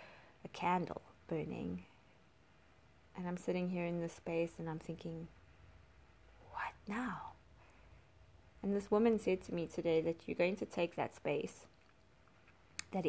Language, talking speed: English, 140 wpm